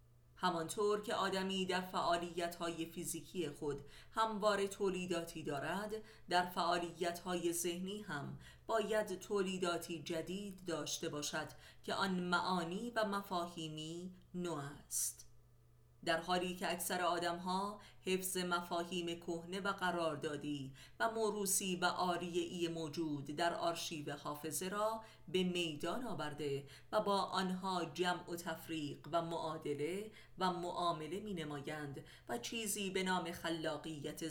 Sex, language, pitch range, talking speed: female, Persian, 150-190 Hz, 115 wpm